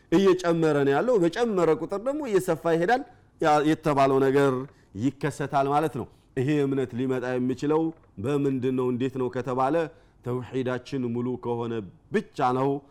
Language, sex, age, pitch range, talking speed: Amharic, male, 40-59, 130-185 Hz, 125 wpm